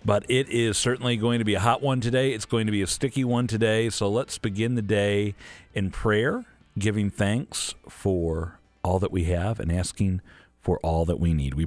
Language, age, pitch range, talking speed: English, 50-69, 85-115 Hz, 210 wpm